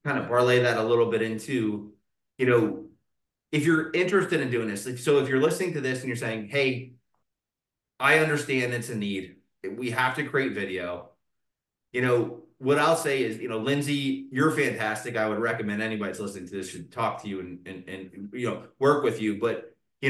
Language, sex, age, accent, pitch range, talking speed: English, male, 30-49, American, 105-130 Hz, 205 wpm